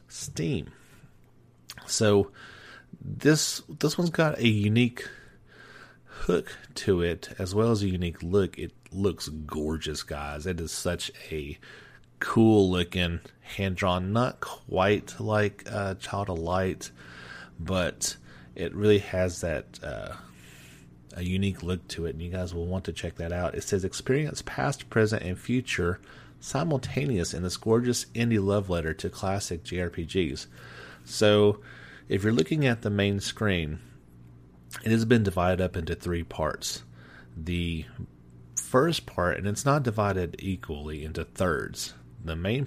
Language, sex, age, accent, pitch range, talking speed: English, male, 30-49, American, 80-105 Hz, 140 wpm